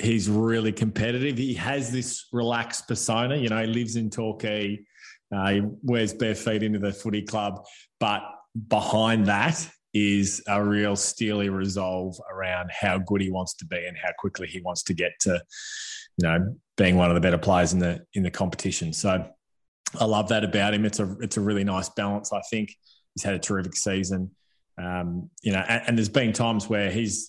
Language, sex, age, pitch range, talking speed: English, male, 20-39, 100-115 Hz, 195 wpm